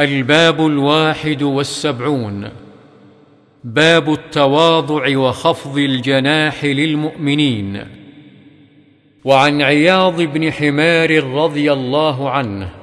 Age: 50-69